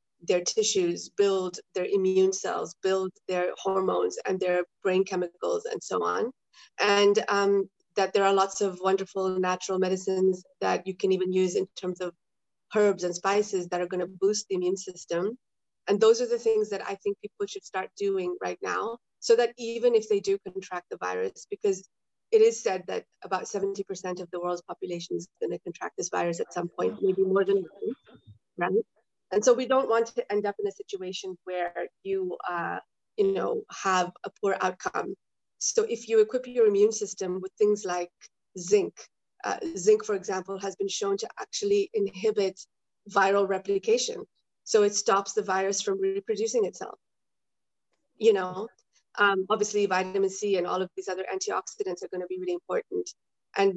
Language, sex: English, female